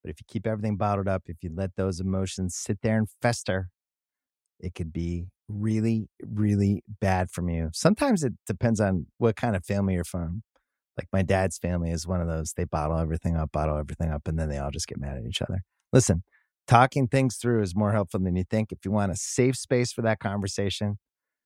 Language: English